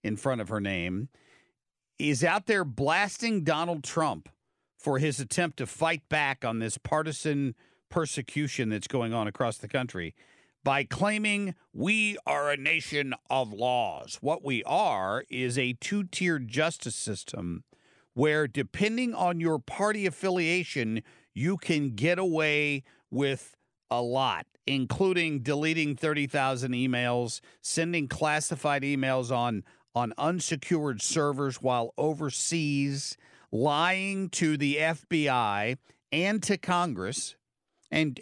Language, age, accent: English, 50-69, American